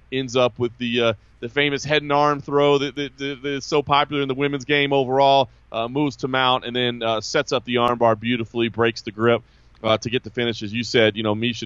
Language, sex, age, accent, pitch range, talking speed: English, male, 30-49, American, 115-140 Hz, 250 wpm